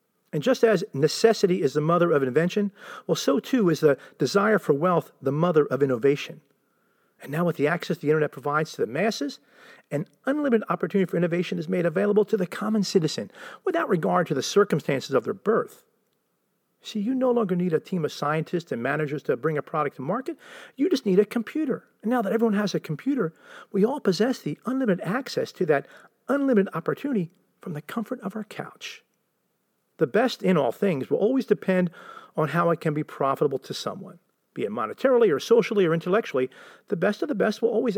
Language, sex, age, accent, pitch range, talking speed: English, male, 40-59, American, 160-230 Hz, 200 wpm